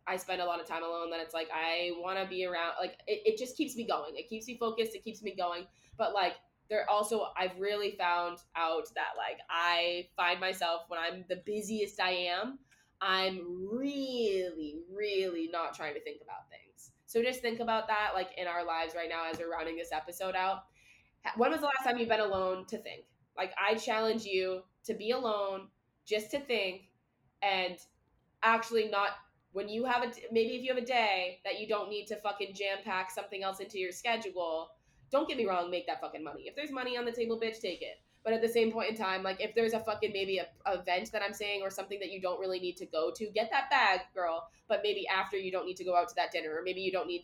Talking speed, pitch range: 240 wpm, 180-225 Hz